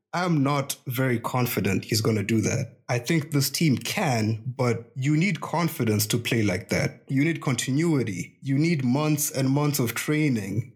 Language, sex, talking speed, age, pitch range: English, male, 180 wpm, 20-39, 115-140 Hz